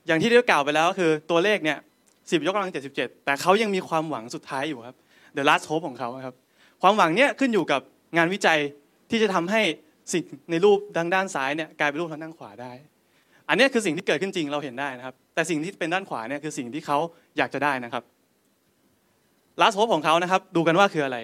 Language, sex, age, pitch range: Thai, male, 20-39, 140-180 Hz